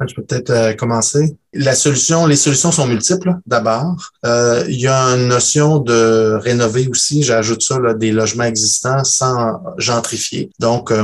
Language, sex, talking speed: French, male, 170 wpm